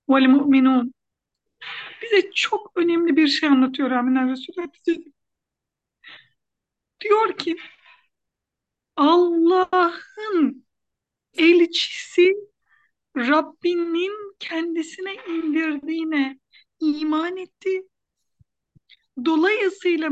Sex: female